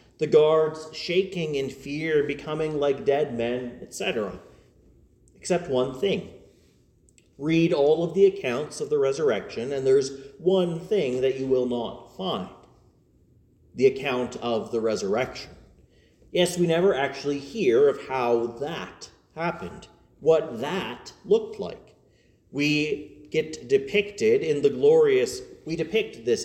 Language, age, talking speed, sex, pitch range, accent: English, 40-59, 130 wpm, male, 135-195 Hz, American